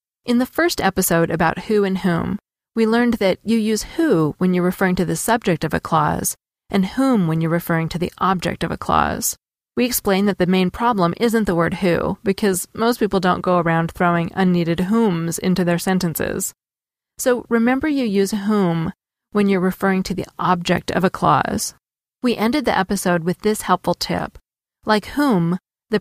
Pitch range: 175-220 Hz